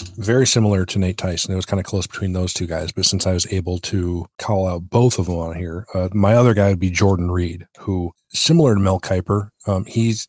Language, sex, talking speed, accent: English, male, 245 wpm, American